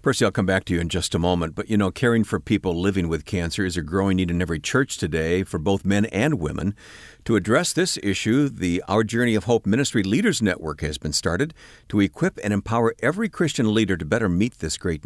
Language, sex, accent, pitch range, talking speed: English, male, American, 90-125 Hz, 235 wpm